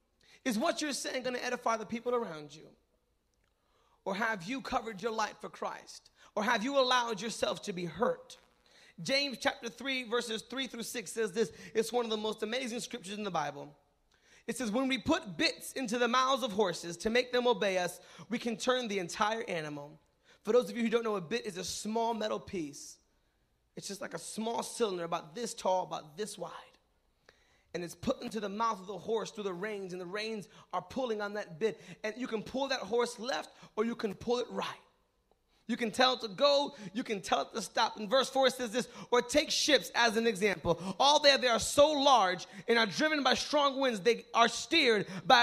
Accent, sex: American, male